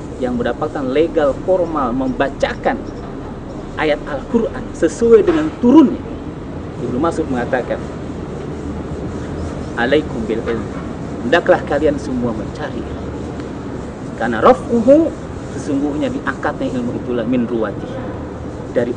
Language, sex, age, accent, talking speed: Indonesian, male, 40-59, native, 90 wpm